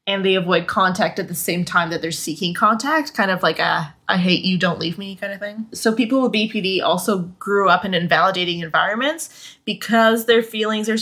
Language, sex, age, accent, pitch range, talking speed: English, female, 20-39, American, 175-210 Hz, 210 wpm